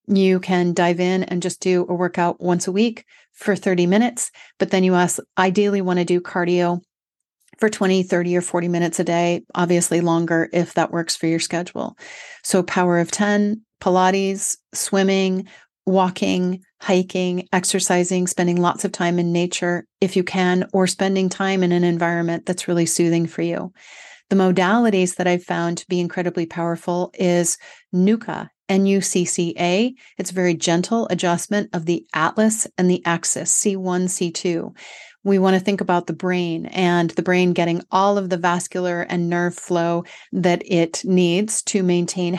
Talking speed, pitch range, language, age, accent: 165 wpm, 175-195 Hz, English, 40-59, American